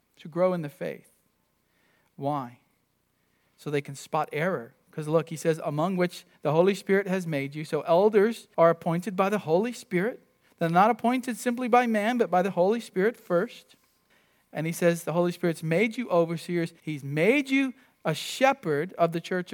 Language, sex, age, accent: English, male, 40-59, American